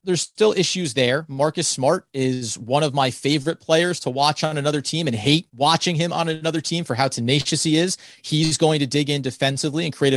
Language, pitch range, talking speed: English, 130-165 Hz, 220 wpm